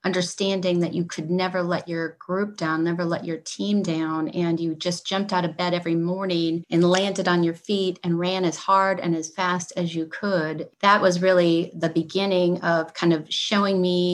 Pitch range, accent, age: 165-180 Hz, American, 30-49